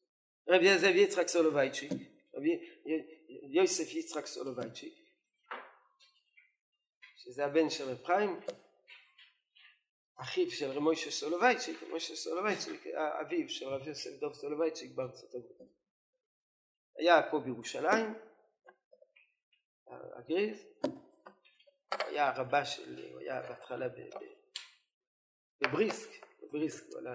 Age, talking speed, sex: 40-59, 95 wpm, male